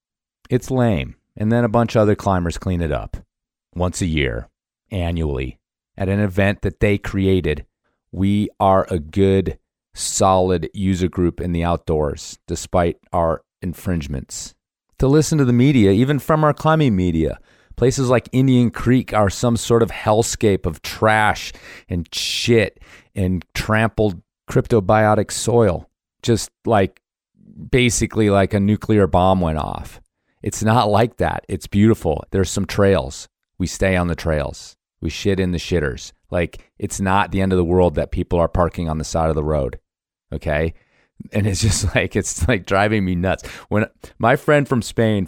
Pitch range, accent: 90-110 Hz, American